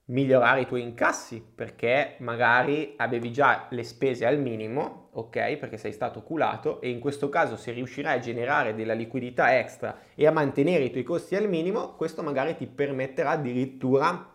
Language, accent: Italian, native